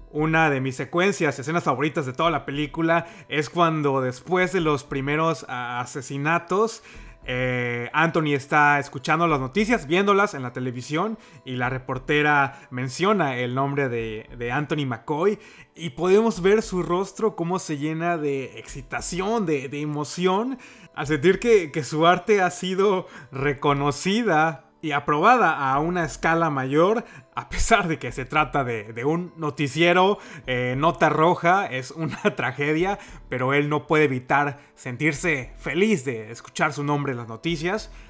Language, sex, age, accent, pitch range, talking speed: Spanish, male, 30-49, Mexican, 135-170 Hz, 150 wpm